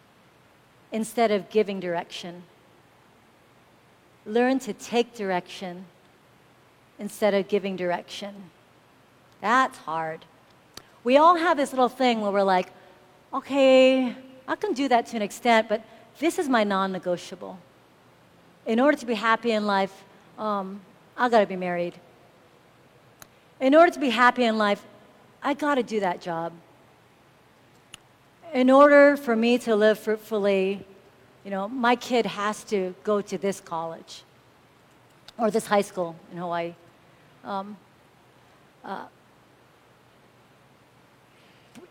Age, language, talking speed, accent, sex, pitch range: 50-69, English, 125 wpm, American, female, 190-245 Hz